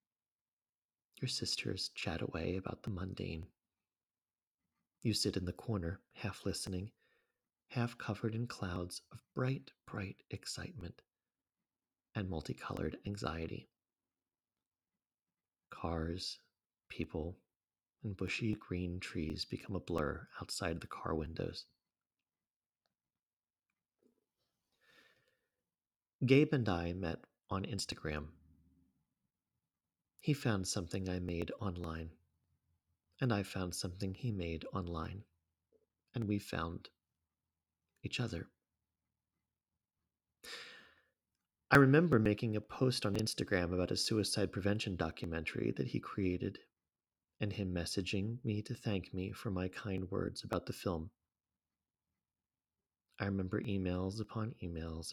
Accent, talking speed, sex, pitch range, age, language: American, 105 wpm, male, 85-110 Hz, 40-59, English